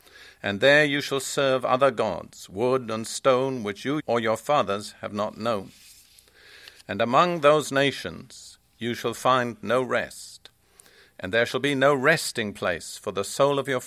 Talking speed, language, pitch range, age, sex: 170 wpm, English, 105-135 Hz, 50-69, male